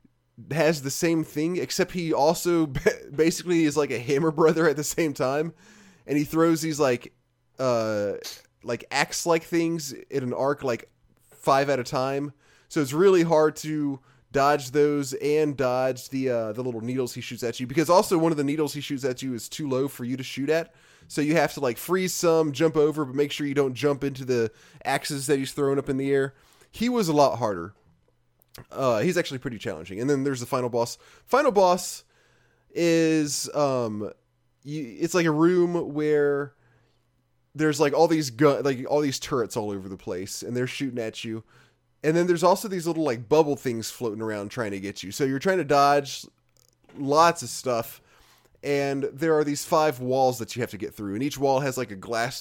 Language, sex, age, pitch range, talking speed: English, male, 20-39, 125-155 Hz, 210 wpm